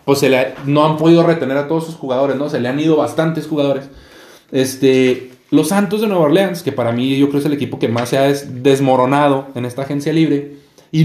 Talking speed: 240 wpm